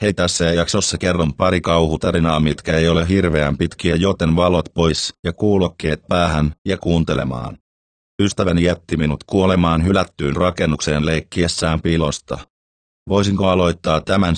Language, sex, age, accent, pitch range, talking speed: Finnish, male, 30-49, native, 80-90 Hz, 125 wpm